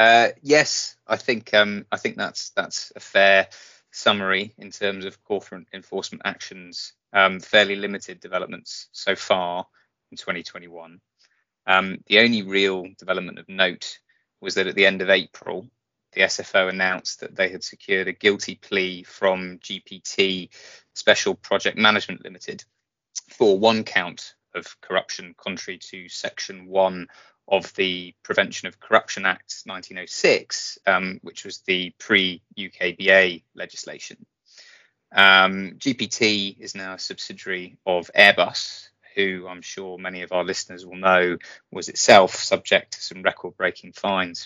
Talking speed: 140 wpm